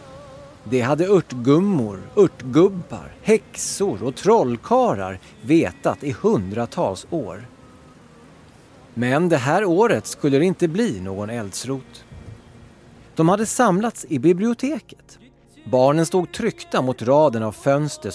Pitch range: 115-195 Hz